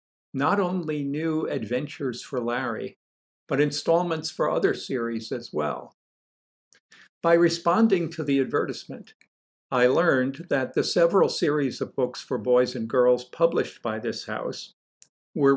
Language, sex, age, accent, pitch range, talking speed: English, male, 60-79, American, 115-140 Hz, 135 wpm